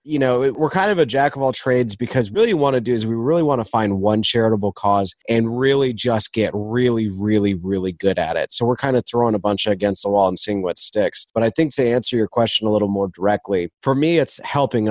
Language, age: English, 30-49